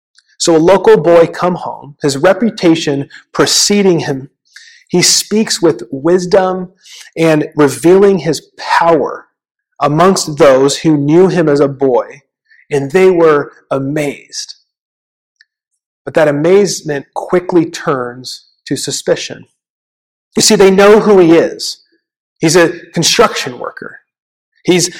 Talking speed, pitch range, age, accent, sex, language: 120 wpm, 145-195 Hz, 40-59, American, male, English